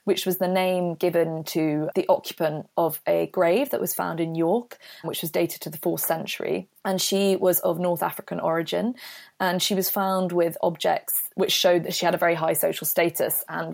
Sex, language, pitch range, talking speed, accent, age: female, English, 165-185 Hz, 205 wpm, British, 20-39